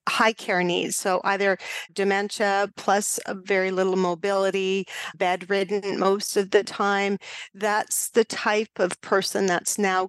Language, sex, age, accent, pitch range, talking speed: English, female, 40-59, American, 190-220 Hz, 135 wpm